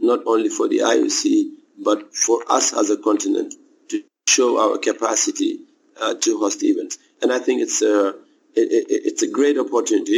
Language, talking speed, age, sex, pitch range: English, 165 wpm, 50-69, male, 310-345 Hz